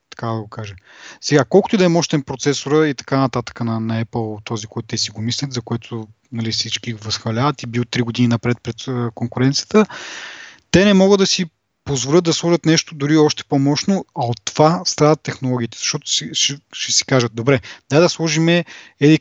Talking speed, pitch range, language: 200 wpm, 125-165 Hz, Bulgarian